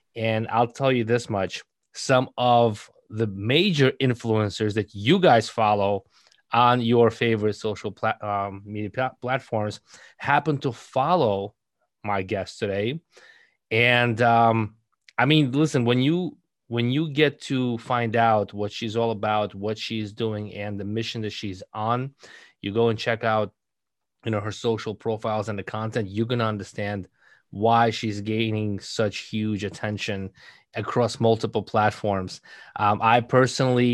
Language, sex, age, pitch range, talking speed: English, male, 20-39, 105-120 Hz, 150 wpm